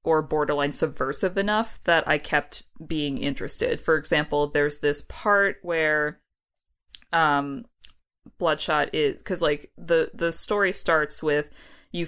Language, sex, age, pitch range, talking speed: English, female, 20-39, 145-180 Hz, 130 wpm